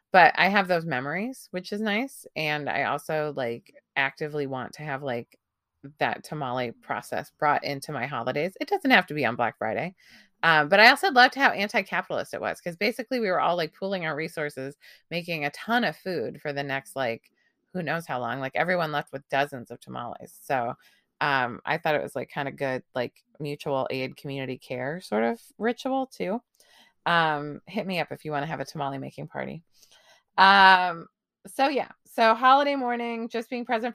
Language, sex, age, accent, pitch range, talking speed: English, female, 20-39, American, 145-215 Hz, 195 wpm